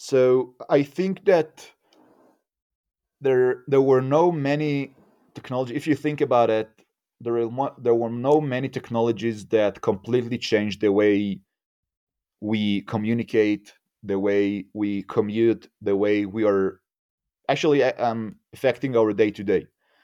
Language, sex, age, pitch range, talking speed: English, male, 30-49, 105-130 Hz, 125 wpm